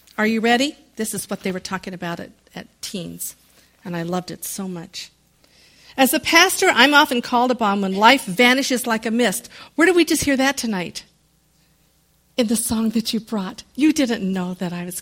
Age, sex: 50-69, female